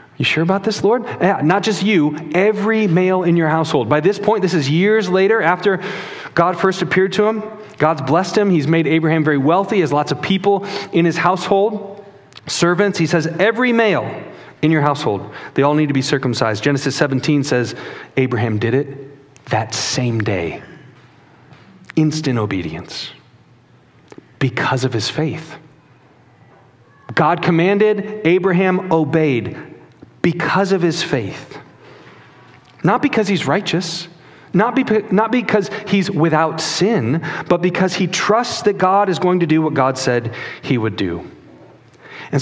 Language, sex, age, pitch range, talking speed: English, male, 40-59, 130-190 Hz, 150 wpm